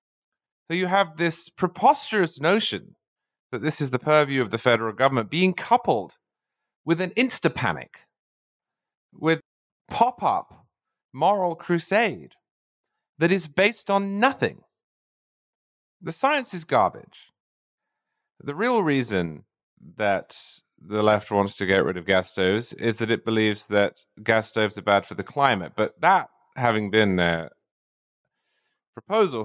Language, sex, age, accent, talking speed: English, male, 30-49, British, 130 wpm